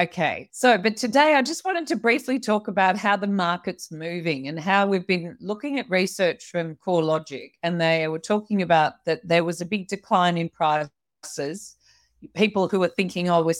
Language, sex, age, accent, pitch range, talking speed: English, female, 40-59, Australian, 165-210 Hz, 190 wpm